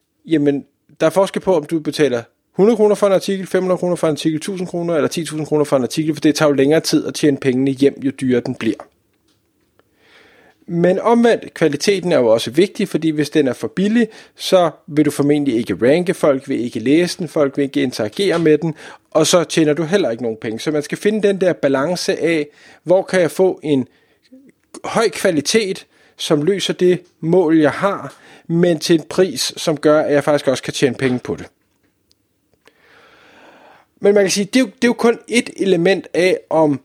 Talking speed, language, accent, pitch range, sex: 205 wpm, Danish, native, 145-190 Hz, male